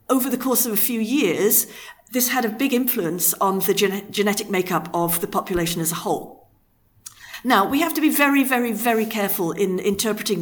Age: 50-69